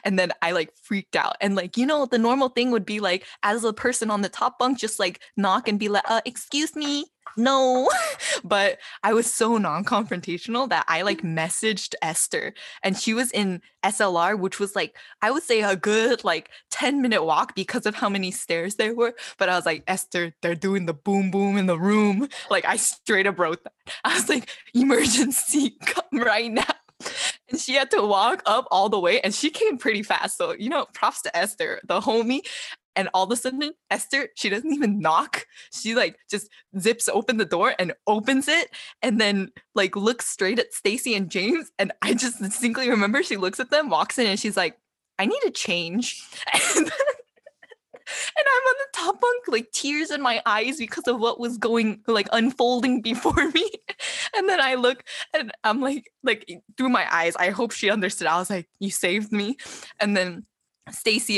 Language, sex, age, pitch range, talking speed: English, female, 20-39, 195-265 Hz, 200 wpm